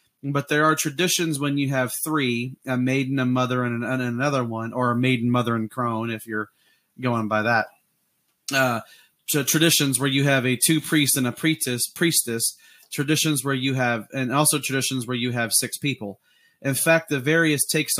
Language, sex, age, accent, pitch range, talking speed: English, male, 30-49, American, 125-145 Hz, 190 wpm